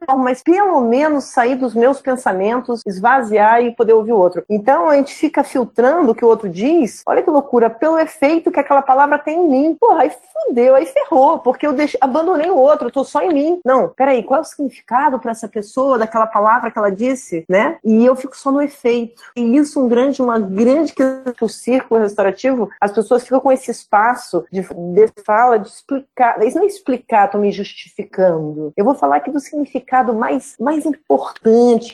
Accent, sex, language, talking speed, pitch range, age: Brazilian, female, Portuguese, 205 wpm, 225-290 Hz, 40-59